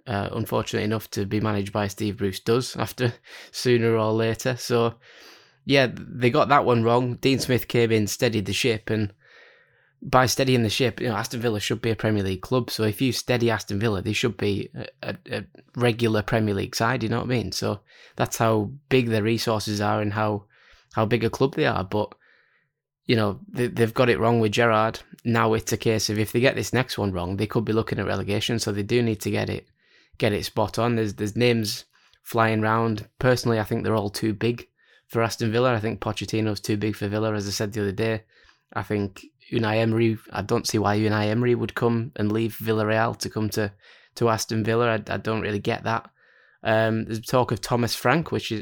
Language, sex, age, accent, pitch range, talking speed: English, male, 10-29, British, 105-120 Hz, 220 wpm